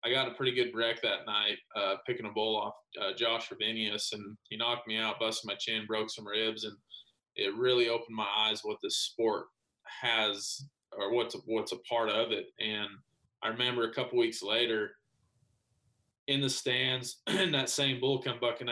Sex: male